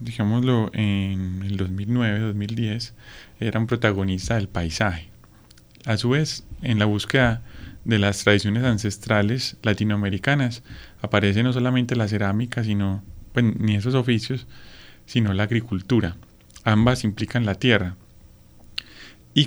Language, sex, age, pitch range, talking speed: Spanish, male, 20-39, 100-120 Hz, 115 wpm